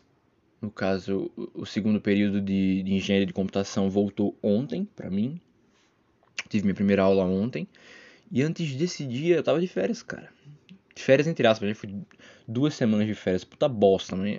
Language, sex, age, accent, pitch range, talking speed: Portuguese, male, 20-39, Brazilian, 100-145 Hz, 160 wpm